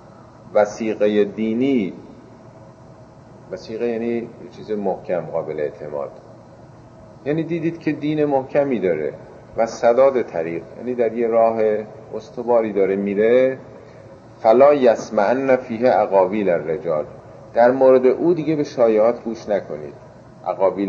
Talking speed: 110 wpm